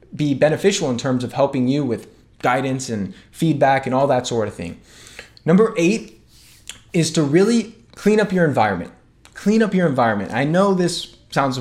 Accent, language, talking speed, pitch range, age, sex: American, English, 175 wpm, 130-175 Hz, 20-39, male